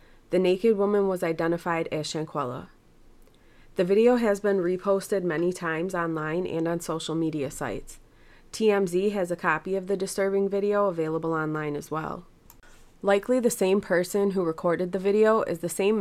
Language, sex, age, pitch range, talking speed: English, female, 20-39, 160-185 Hz, 160 wpm